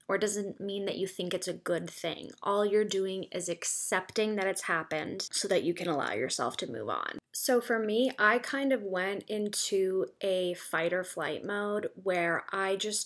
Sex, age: female, 20-39